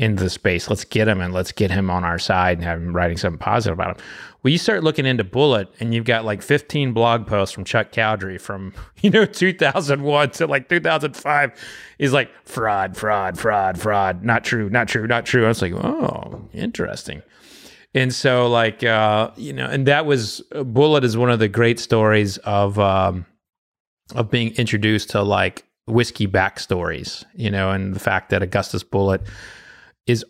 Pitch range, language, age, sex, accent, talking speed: 100-120 Hz, English, 30-49, male, American, 195 wpm